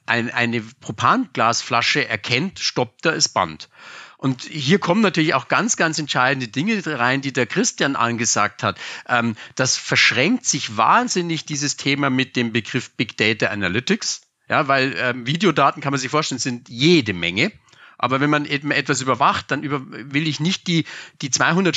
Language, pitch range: German, 130-165 Hz